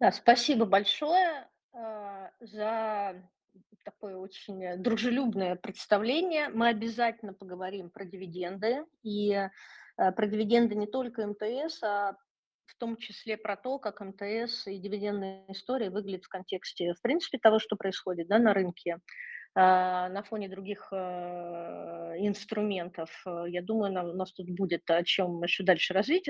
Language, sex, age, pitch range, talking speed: Russian, female, 30-49, 185-235 Hz, 125 wpm